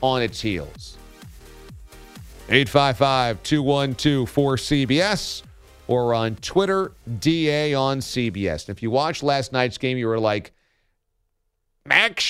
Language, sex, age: English, male, 40-59